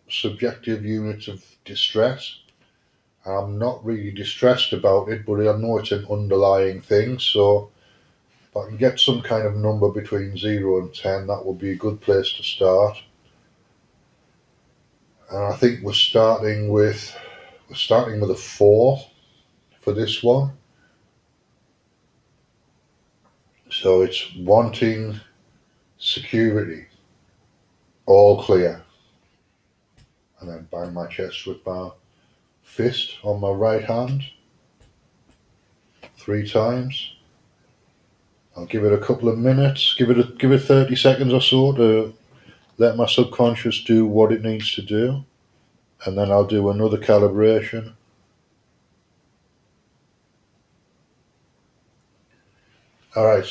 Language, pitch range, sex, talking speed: English, 100-120 Hz, male, 120 wpm